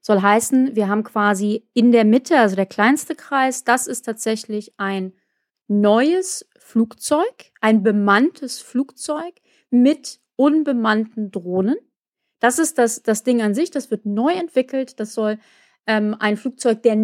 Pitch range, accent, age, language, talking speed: 205-270 Hz, German, 30-49, German, 145 wpm